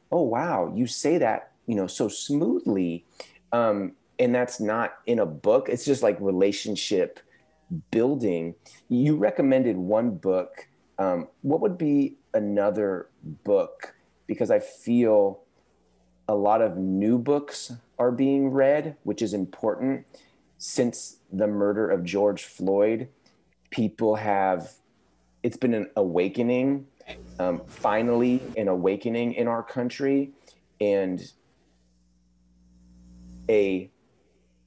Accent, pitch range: American, 90-120 Hz